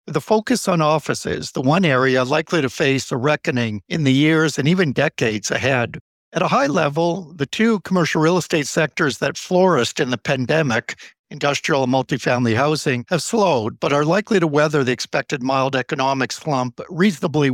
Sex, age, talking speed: male, 60-79, 175 wpm